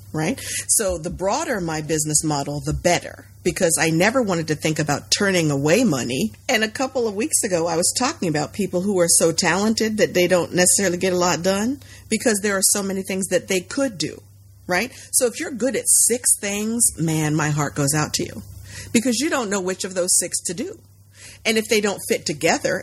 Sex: female